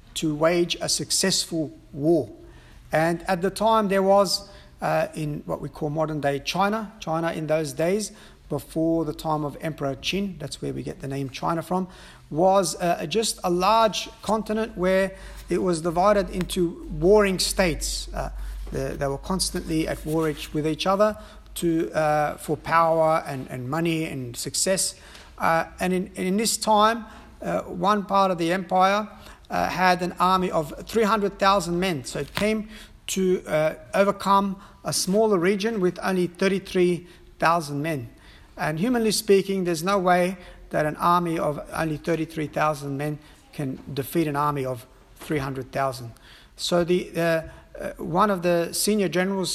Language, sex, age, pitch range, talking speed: English, male, 50-69, 160-195 Hz, 155 wpm